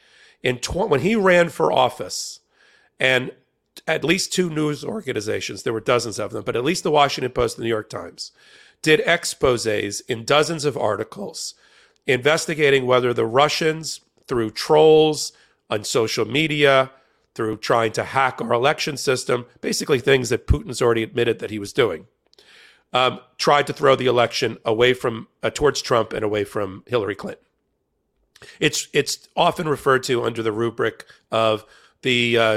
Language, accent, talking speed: English, American, 160 wpm